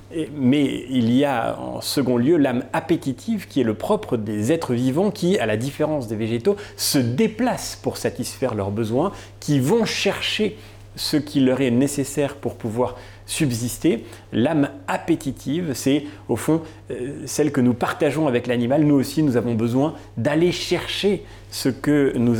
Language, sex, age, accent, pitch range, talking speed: French, male, 40-59, French, 115-150 Hz, 165 wpm